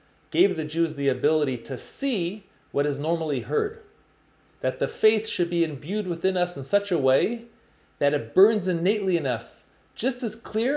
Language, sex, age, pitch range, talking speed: English, male, 30-49, 140-190 Hz, 180 wpm